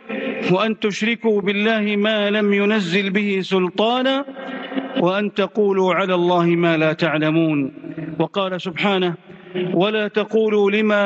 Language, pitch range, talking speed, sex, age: English, 190-225 Hz, 110 wpm, male, 40-59